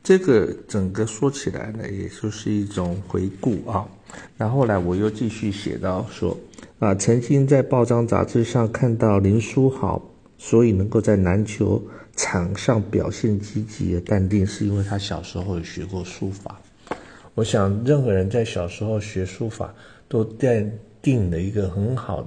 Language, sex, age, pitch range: Chinese, male, 50-69, 95-110 Hz